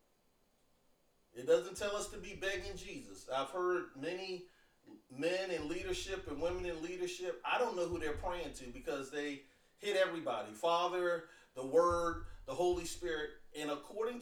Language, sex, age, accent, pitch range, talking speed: English, male, 40-59, American, 150-200 Hz, 155 wpm